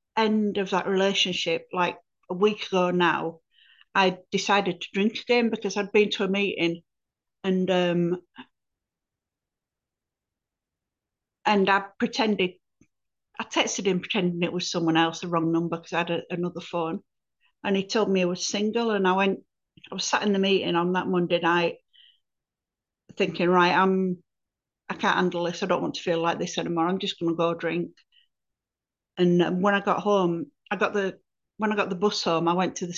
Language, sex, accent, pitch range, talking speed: English, female, British, 175-215 Hz, 180 wpm